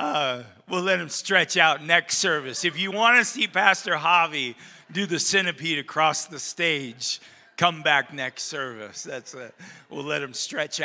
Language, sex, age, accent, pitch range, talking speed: English, male, 40-59, American, 155-210 Hz, 170 wpm